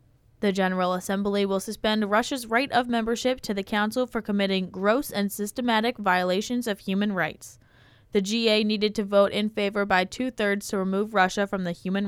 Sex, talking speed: female, 180 wpm